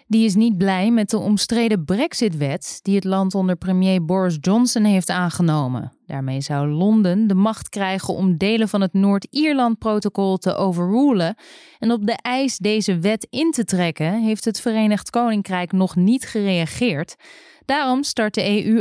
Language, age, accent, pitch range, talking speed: Dutch, 20-39, Dutch, 180-225 Hz, 160 wpm